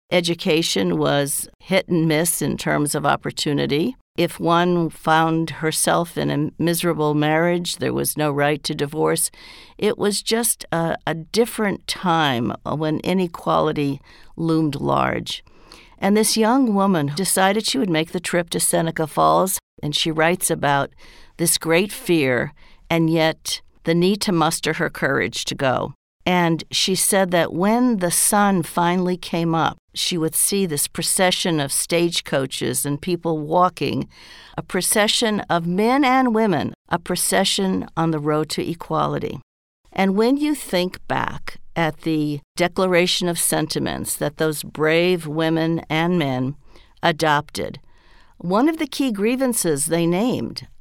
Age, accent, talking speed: 50-69, American, 145 wpm